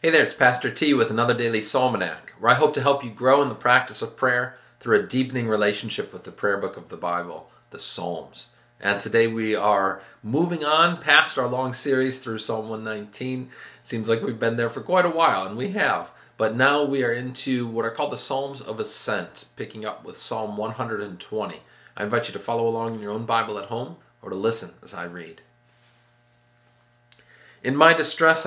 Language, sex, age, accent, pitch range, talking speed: English, male, 40-59, American, 110-130 Hz, 205 wpm